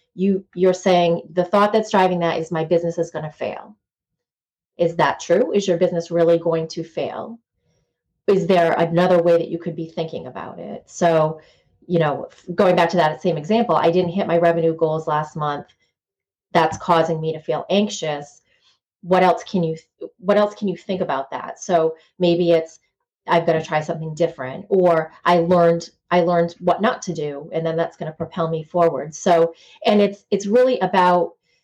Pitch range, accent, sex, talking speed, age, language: 165-185 Hz, American, female, 195 wpm, 30-49, English